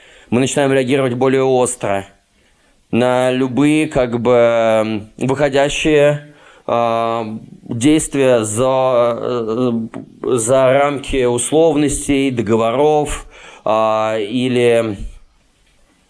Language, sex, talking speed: Russian, male, 70 wpm